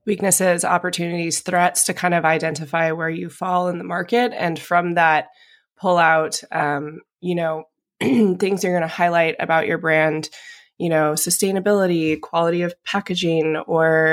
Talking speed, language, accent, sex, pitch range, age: 155 wpm, English, American, female, 150-175 Hz, 20-39